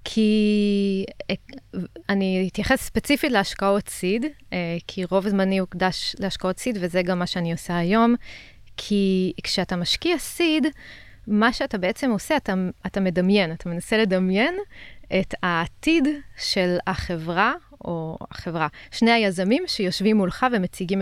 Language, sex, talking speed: Hebrew, female, 125 wpm